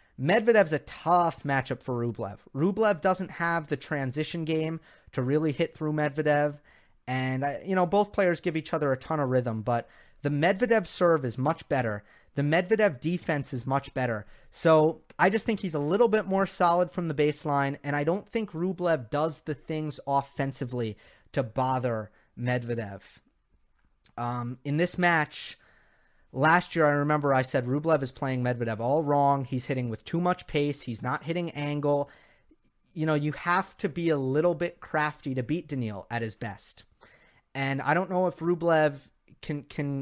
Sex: male